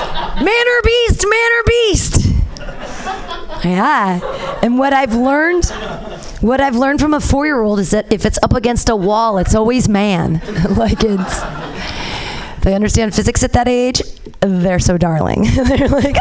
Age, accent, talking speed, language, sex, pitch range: 30-49, American, 150 wpm, English, female, 215-310 Hz